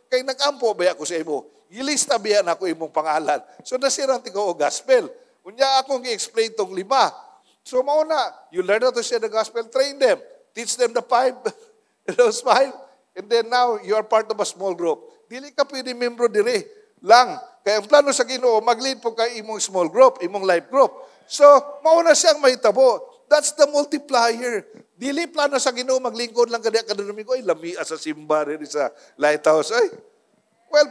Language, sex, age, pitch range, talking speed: English, male, 50-69, 215-285 Hz, 155 wpm